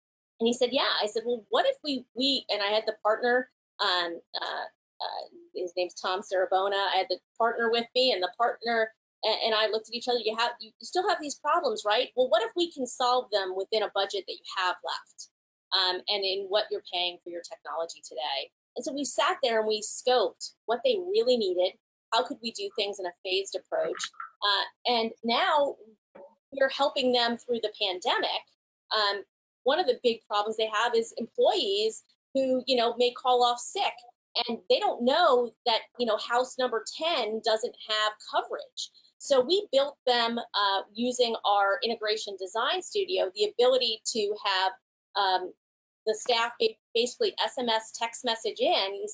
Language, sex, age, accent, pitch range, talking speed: English, female, 30-49, American, 200-270 Hz, 190 wpm